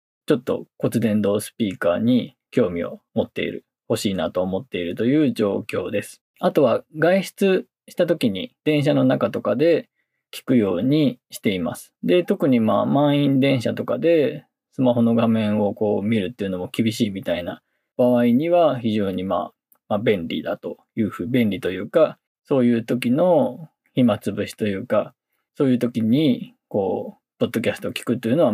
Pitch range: 110-165 Hz